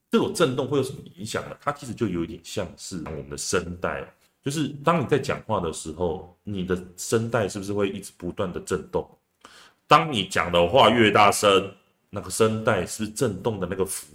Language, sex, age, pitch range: Chinese, male, 30-49, 90-130 Hz